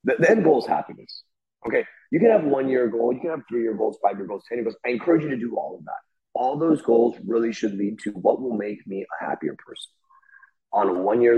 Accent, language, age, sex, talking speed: American, English, 30-49, male, 245 wpm